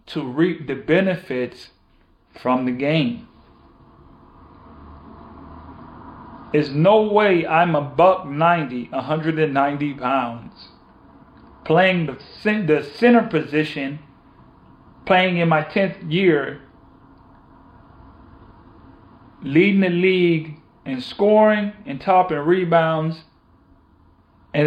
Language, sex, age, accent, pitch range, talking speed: English, male, 40-59, American, 135-175 Hz, 80 wpm